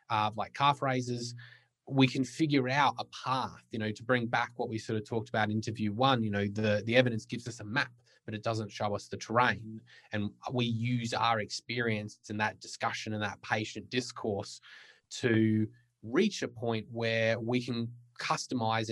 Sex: male